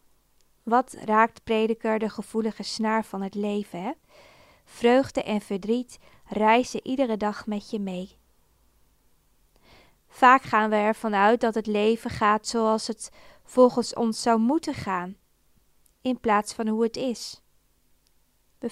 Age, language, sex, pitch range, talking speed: 20-39, Dutch, female, 205-235 Hz, 130 wpm